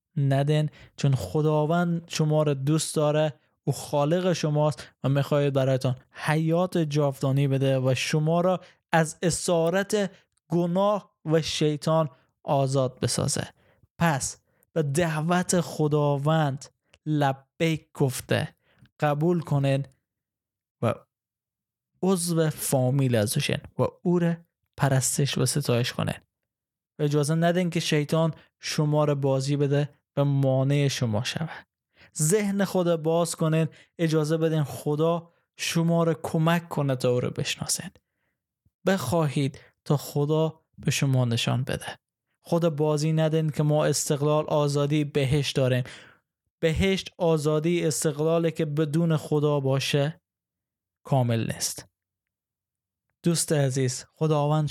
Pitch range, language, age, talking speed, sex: 135-165 Hz, Persian, 20-39, 110 wpm, male